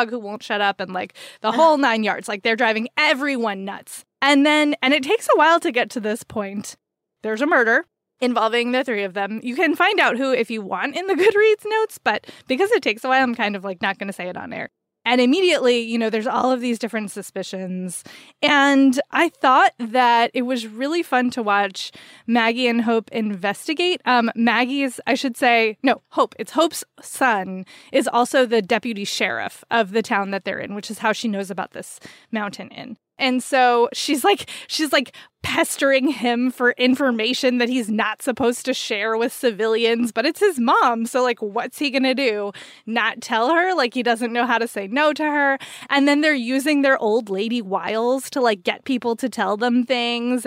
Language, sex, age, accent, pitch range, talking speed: English, female, 20-39, American, 220-270 Hz, 210 wpm